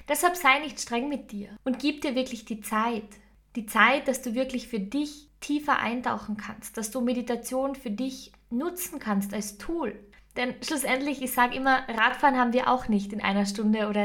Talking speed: 190 wpm